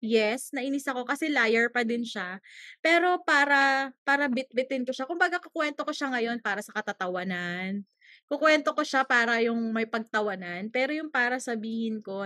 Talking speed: 165 wpm